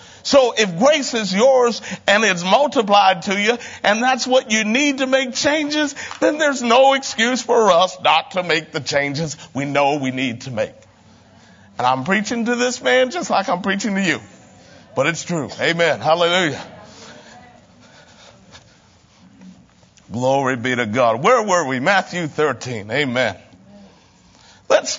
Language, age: English, 50-69